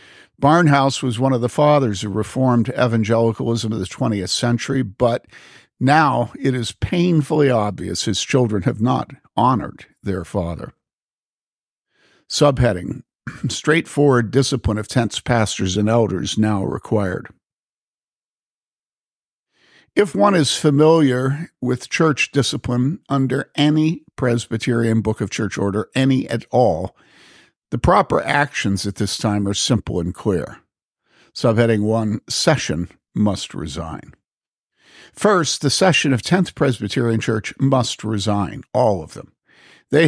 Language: English